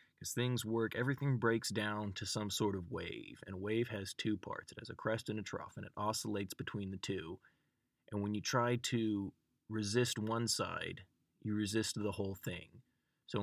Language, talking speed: English, 195 wpm